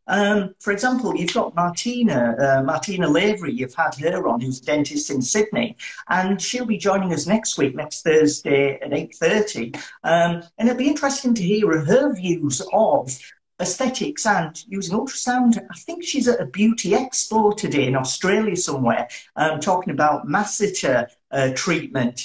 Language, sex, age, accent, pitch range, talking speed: English, male, 50-69, British, 150-215 Hz, 160 wpm